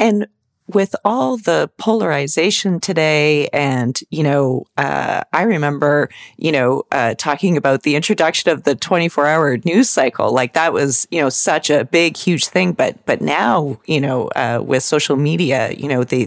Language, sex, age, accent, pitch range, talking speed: English, female, 40-59, American, 140-165 Hz, 170 wpm